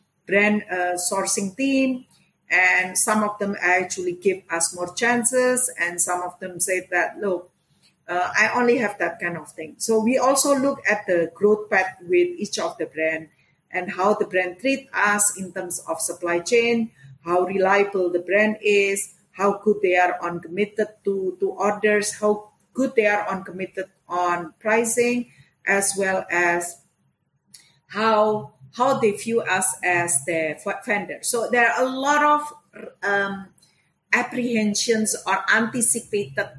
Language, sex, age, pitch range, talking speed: English, female, 50-69, 180-230 Hz, 155 wpm